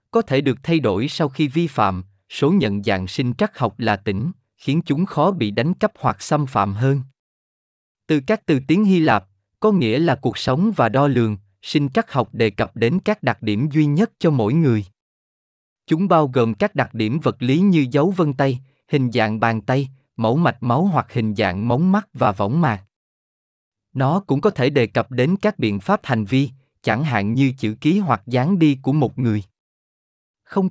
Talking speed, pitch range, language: 205 wpm, 110-160 Hz, Vietnamese